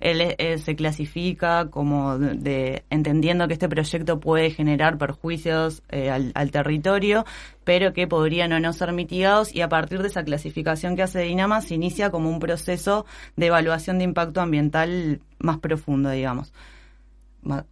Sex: female